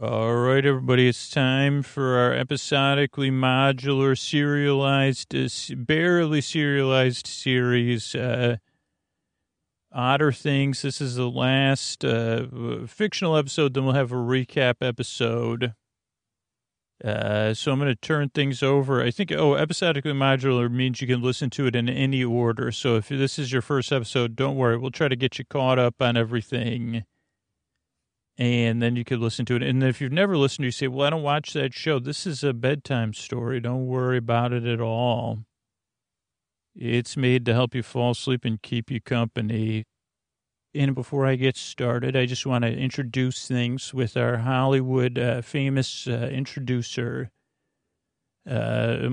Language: English